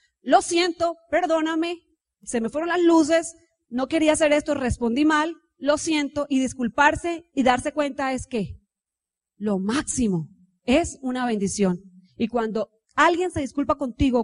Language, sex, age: Spanish, female, 30-49